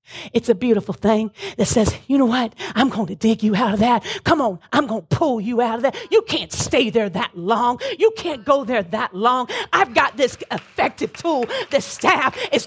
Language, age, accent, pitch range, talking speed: English, 30-49, American, 220-300 Hz, 225 wpm